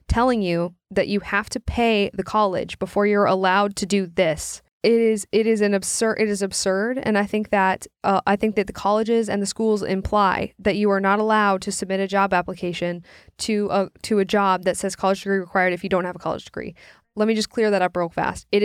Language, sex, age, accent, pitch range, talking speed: English, female, 10-29, American, 190-220 Hz, 240 wpm